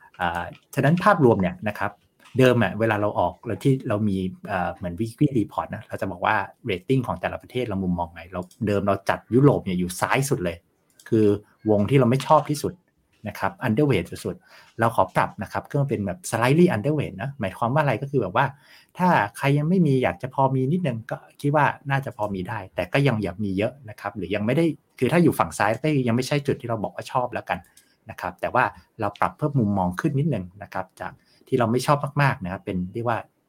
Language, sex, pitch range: Thai, male, 95-135 Hz